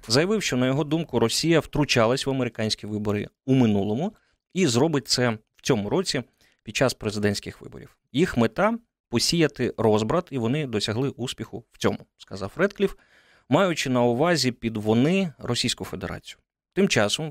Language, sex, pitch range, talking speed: Ukrainian, male, 110-145 Hz, 155 wpm